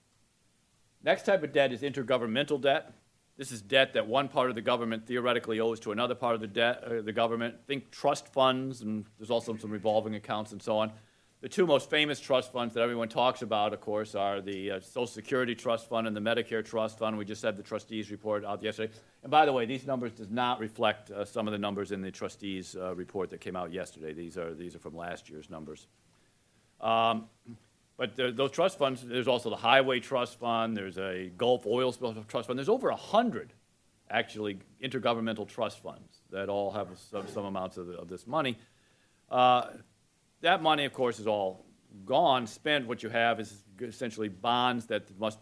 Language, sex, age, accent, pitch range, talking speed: English, male, 40-59, American, 105-125 Hz, 200 wpm